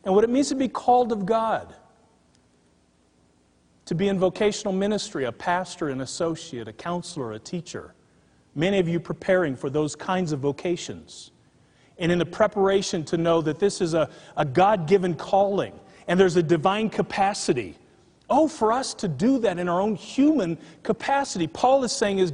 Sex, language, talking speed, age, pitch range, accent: male, English, 170 wpm, 40-59, 150-200 Hz, American